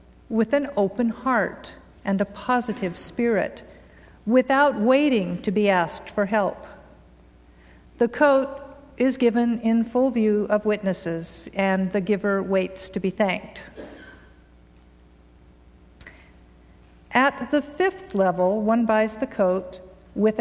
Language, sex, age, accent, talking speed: English, female, 50-69, American, 120 wpm